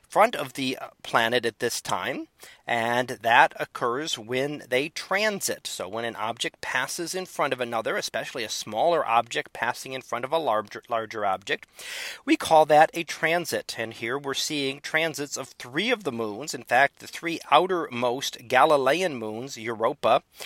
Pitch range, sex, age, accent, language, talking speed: 125-170 Hz, male, 40-59, American, English, 165 wpm